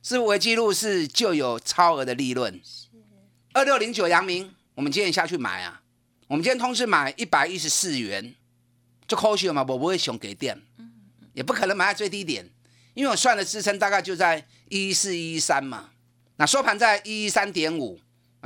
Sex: male